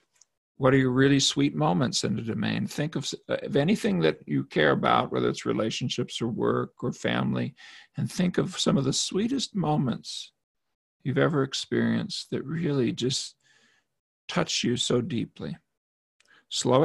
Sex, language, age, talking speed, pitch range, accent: male, English, 50-69, 155 wpm, 115-145 Hz, American